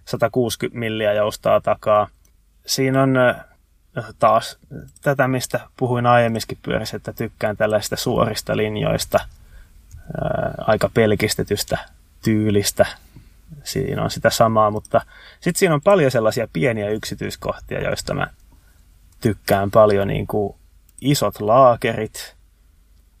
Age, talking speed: 20-39, 105 wpm